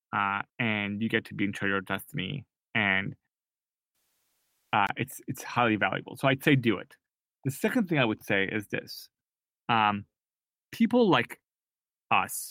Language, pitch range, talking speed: English, 105-140 Hz, 165 wpm